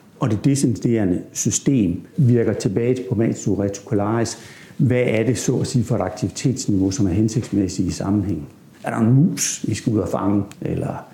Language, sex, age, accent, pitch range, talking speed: Danish, male, 60-79, native, 105-135 Hz, 170 wpm